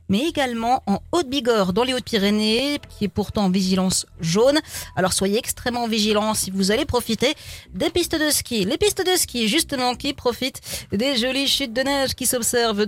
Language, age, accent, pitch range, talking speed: French, 40-59, French, 200-245 Hz, 185 wpm